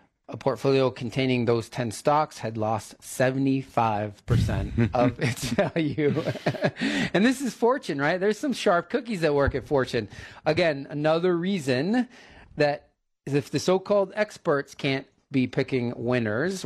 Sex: male